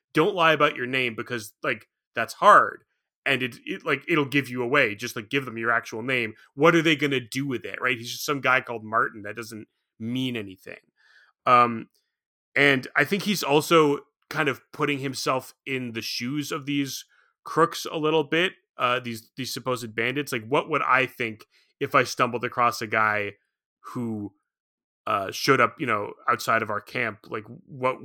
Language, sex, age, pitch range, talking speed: English, male, 30-49, 115-145 Hz, 190 wpm